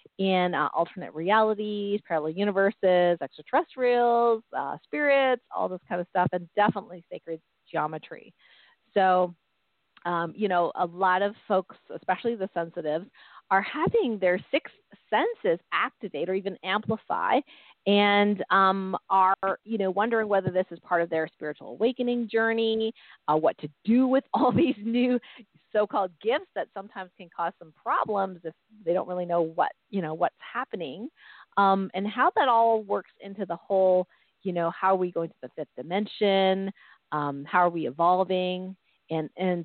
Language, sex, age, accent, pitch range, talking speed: English, female, 40-59, American, 175-215 Hz, 160 wpm